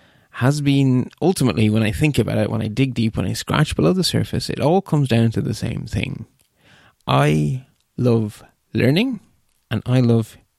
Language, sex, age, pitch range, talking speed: English, male, 30-49, 110-145 Hz, 180 wpm